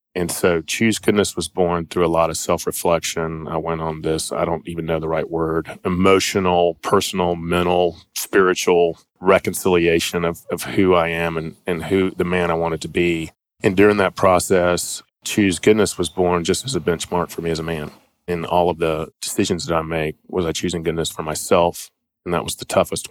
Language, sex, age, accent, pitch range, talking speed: English, male, 30-49, American, 80-90 Hz, 200 wpm